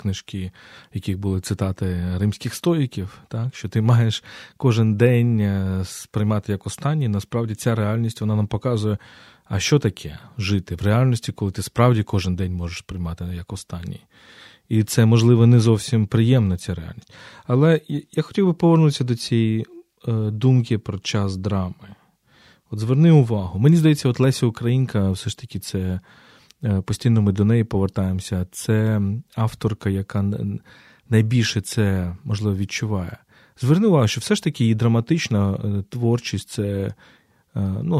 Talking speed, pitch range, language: 140 wpm, 100-125 Hz, Ukrainian